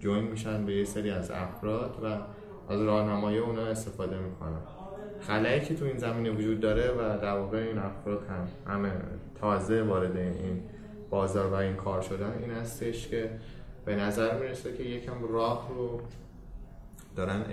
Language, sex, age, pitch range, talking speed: Persian, male, 20-39, 95-110 Hz, 155 wpm